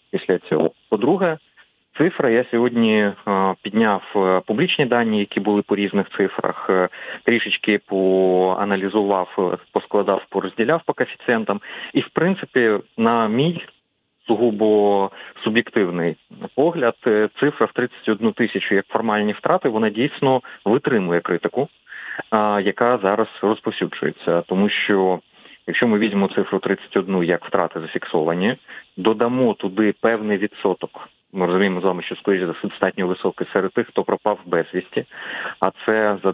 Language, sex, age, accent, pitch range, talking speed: Ukrainian, male, 30-49, native, 95-110 Hz, 120 wpm